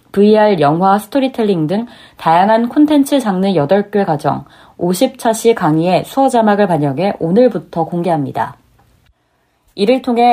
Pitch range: 180-245 Hz